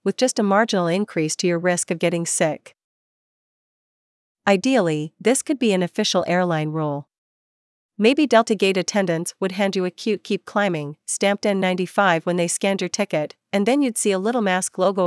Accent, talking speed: American, 180 wpm